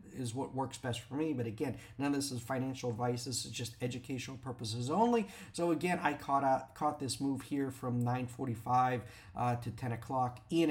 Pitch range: 120-145 Hz